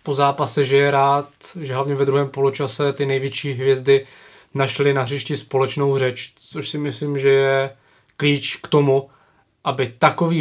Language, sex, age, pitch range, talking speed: Czech, male, 20-39, 125-135 Hz, 155 wpm